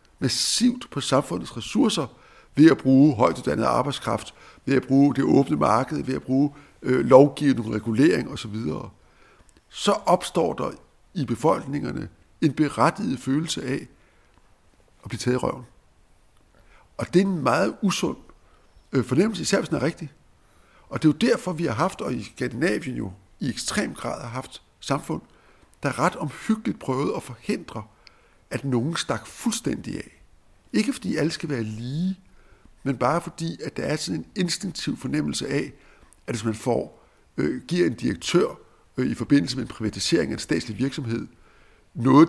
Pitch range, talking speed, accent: 110-155 Hz, 165 wpm, native